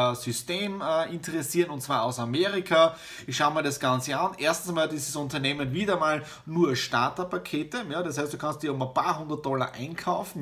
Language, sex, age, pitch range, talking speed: German, male, 30-49, 140-185 Hz, 185 wpm